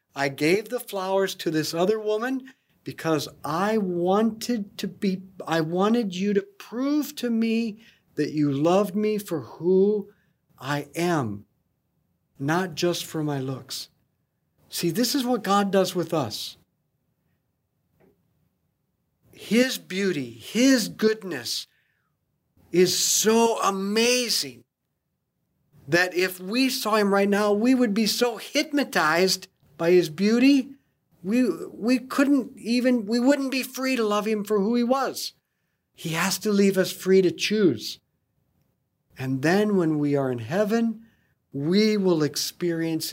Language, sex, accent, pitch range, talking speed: English, male, American, 150-215 Hz, 135 wpm